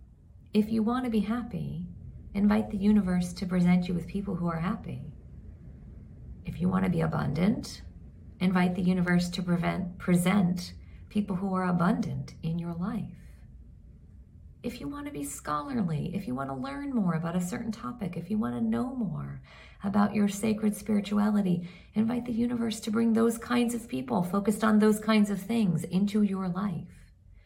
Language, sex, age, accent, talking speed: English, female, 40-59, American, 175 wpm